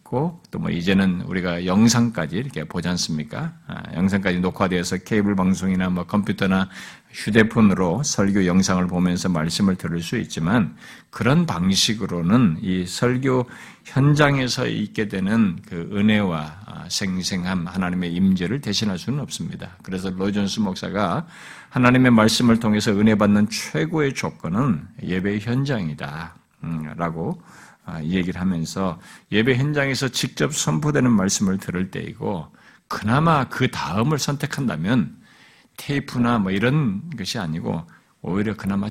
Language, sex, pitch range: Korean, male, 95-130 Hz